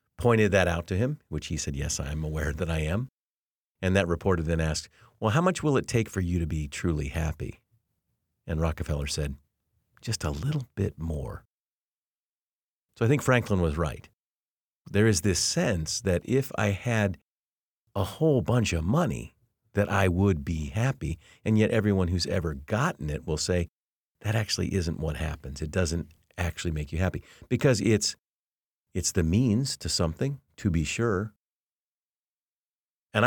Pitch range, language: 80-115 Hz, English